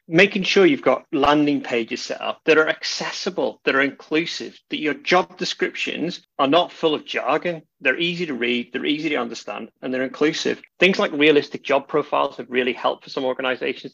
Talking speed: 195 wpm